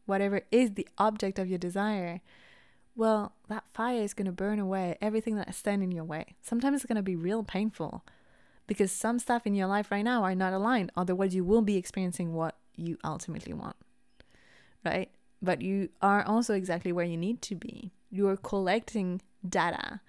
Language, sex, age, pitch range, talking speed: English, female, 20-39, 185-220 Hz, 190 wpm